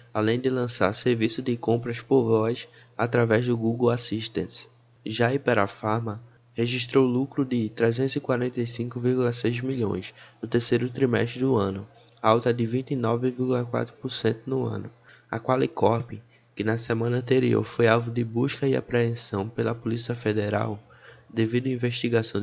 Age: 20-39